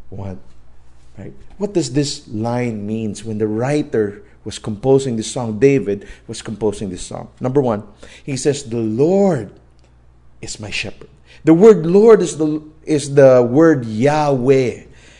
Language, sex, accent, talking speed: English, male, Filipino, 145 wpm